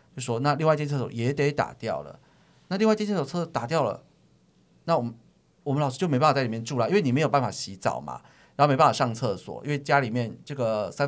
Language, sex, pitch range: Chinese, male, 110-145 Hz